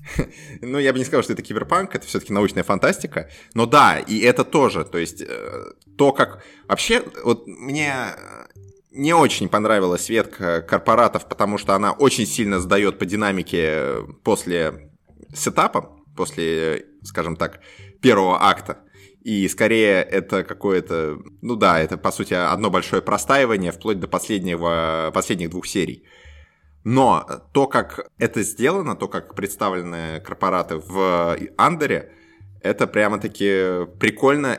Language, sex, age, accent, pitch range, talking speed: Russian, male, 20-39, native, 95-135 Hz, 130 wpm